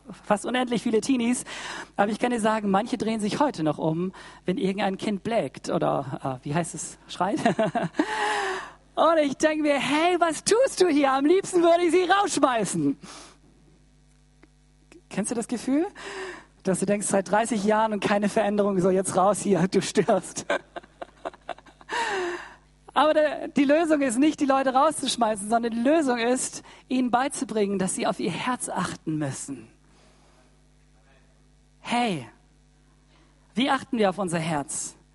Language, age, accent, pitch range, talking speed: German, 40-59, German, 185-255 Hz, 150 wpm